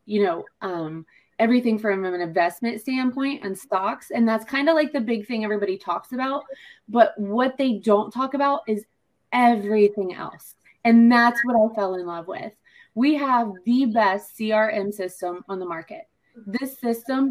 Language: English